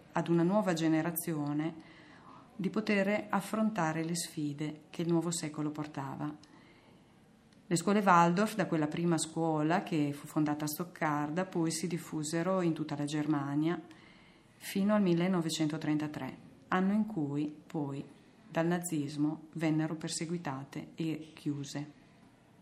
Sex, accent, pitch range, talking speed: female, native, 150-180 Hz, 120 wpm